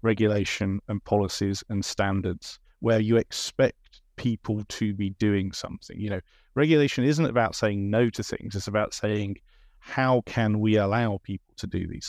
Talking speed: 165 wpm